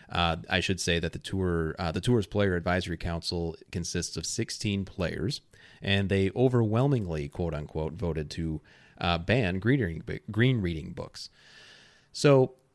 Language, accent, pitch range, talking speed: English, American, 85-110 Hz, 135 wpm